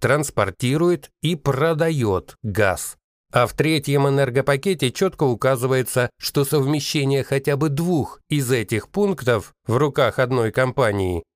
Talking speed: 115 wpm